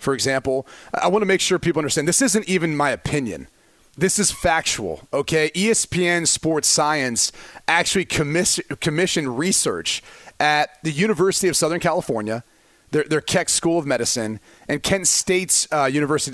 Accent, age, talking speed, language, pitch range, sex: American, 30-49, 155 wpm, English, 145-185 Hz, male